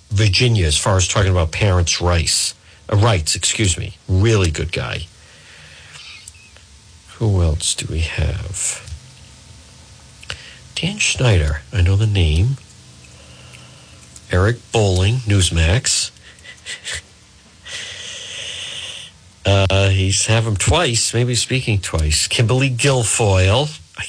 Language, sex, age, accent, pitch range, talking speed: English, male, 60-79, American, 90-120 Hz, 100 wpm